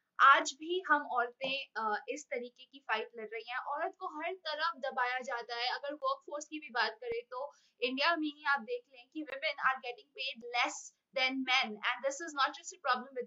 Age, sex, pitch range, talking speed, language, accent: 20-39, female, 235-300 Hz, 140 wpm, Hindi, native